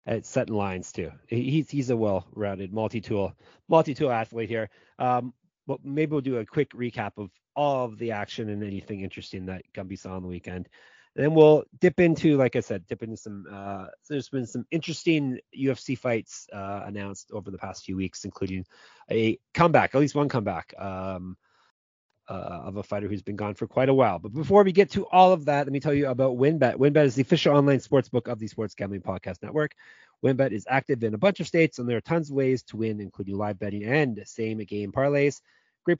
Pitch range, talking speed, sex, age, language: 100-140 Hz, 220 wpm, male, 30-49, English